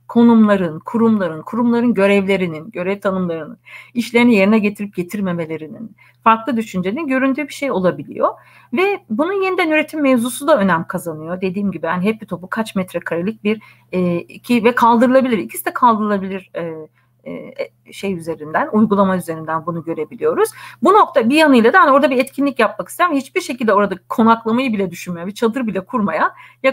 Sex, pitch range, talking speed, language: female, 180-240 Hz, 155 wpm, Turkish